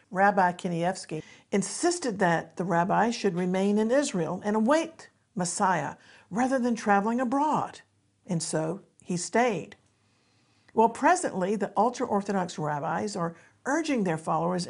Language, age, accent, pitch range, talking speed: English, 50-69, American, 180-240 Hz, 125 wpm